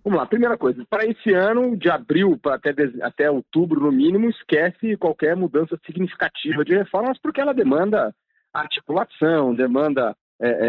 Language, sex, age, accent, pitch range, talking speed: Portuguese, male, 40-59, Brazilian, 130-195 Hz, 140 wpm